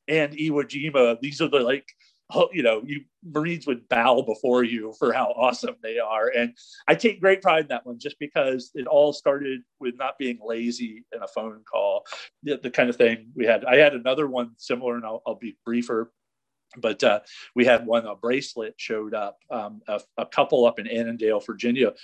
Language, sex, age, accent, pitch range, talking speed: English, male, 40-59, American, 115-145 Hz, 205 wpm